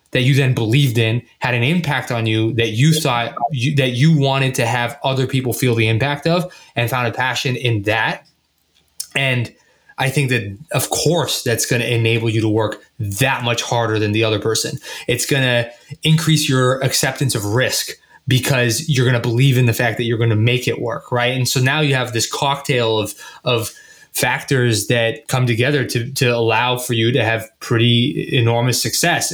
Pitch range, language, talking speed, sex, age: 115-140 Hz, English, 200 wpm, male, 20-39